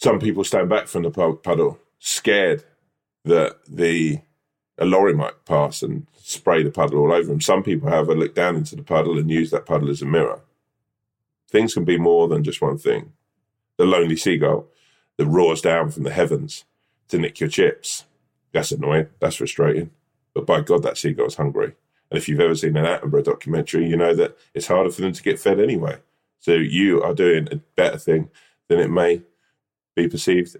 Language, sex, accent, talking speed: English, male, British, 190 wpm